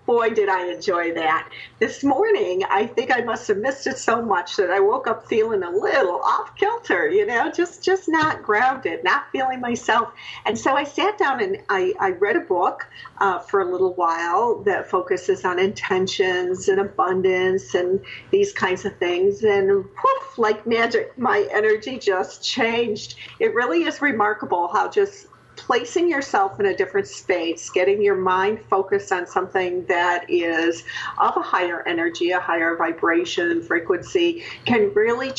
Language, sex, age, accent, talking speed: English, female, 50-69, American, 165 wpm